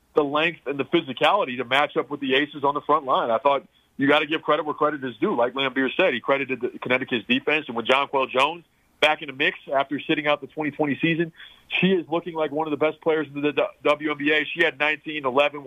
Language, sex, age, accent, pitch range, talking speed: English, male, 40-59, American, 130-155 Hz, 245 wpm